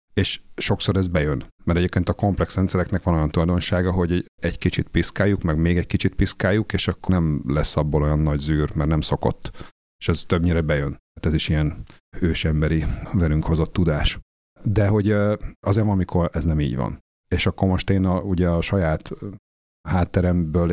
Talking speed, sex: 180 wpm, male